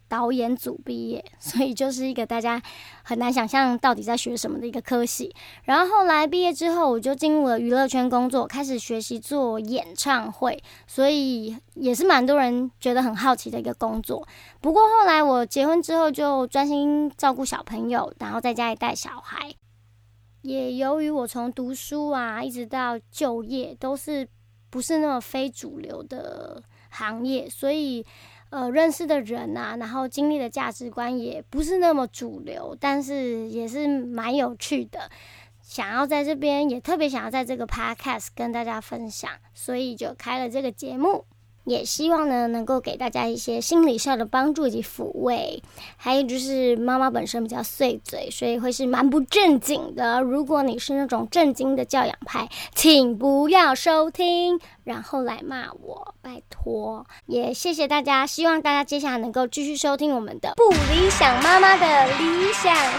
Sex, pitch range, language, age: male, 240-295 Hz, Chinese, 20-39